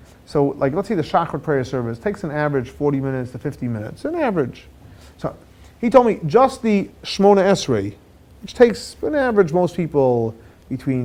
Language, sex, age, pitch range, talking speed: English, male, 30-49, 130-175 Hz, 180 wpm